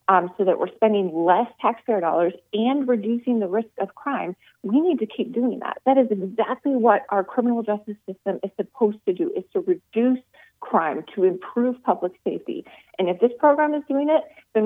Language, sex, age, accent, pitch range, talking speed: English, female, 30-49, American, 195-255 Hz, 195 wpm